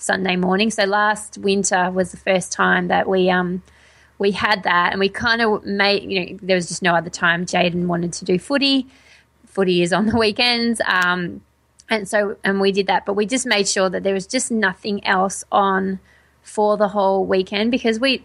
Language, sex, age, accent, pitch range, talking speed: English, female, 20-39, Australian, 180-210 Hz, 205 wpm